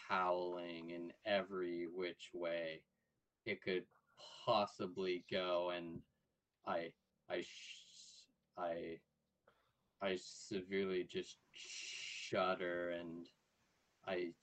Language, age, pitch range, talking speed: English, 30-49, 85-95 Hz, 80 wpm